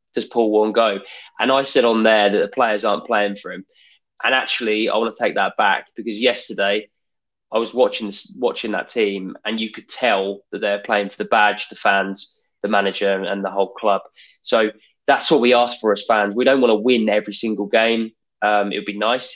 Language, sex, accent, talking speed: English, male, British, 225 wpm